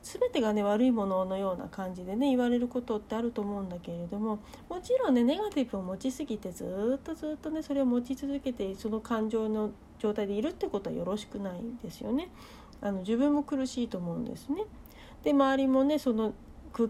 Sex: female